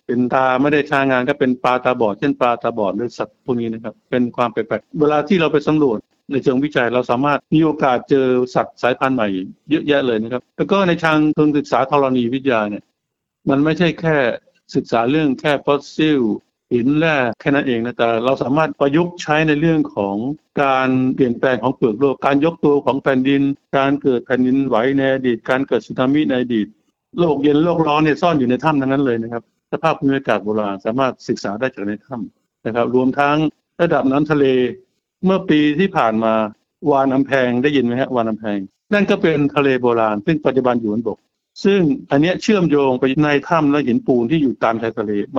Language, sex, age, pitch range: Thai, male, 60-79, 125-150 Hz